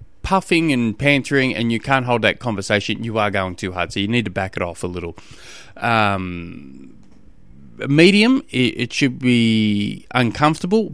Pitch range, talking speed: 105-130 Hz, 165 wpm